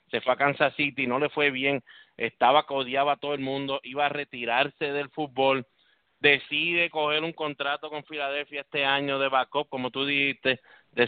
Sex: male